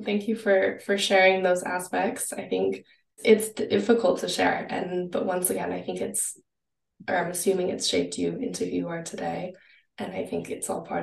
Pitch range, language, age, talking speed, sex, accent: 180-205 Hz, English, 20-39, 200 wpm, female, American